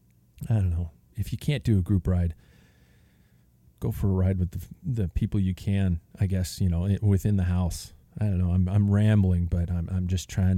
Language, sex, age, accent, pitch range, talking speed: English, male, 40-59, American, 90-115 Hz, 215 wpm